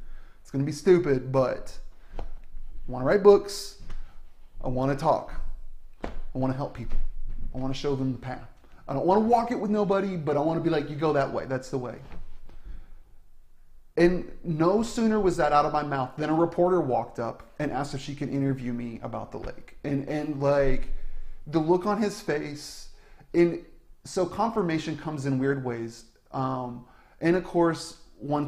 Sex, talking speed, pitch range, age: male, 190 wpm, 120-150 Hz, 30-49